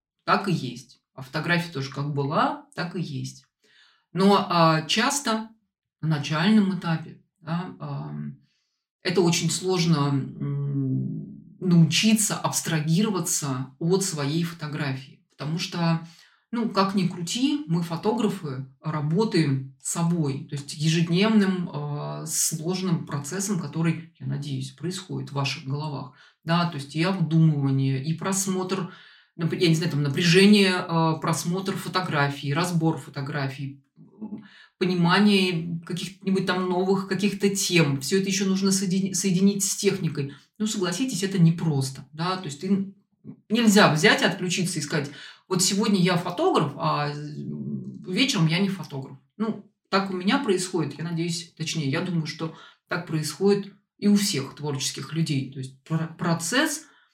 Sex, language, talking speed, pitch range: female, Russian, 130 wpm, 145-190 Hz